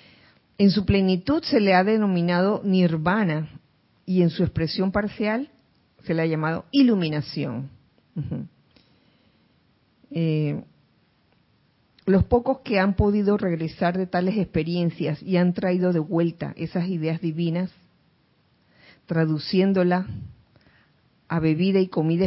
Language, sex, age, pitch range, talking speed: Spanish, female, 50-69, 160-205 Hz, 115 wpm